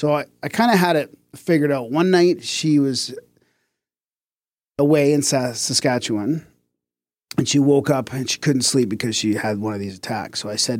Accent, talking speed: American, 190 wpm